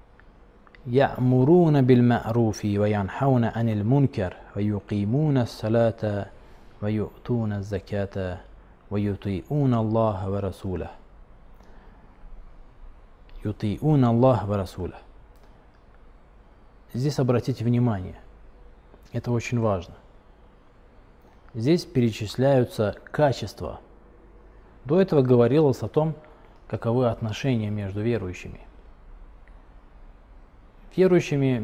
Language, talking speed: Russian, 45 wpm